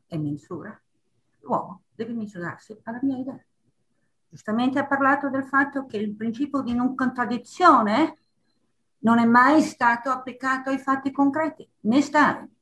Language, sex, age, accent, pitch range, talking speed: Italian, female, 50-69, native, 175-275 Hz, 140 wpm